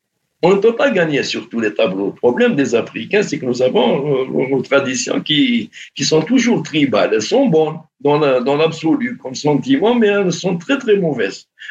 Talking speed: 205 wpm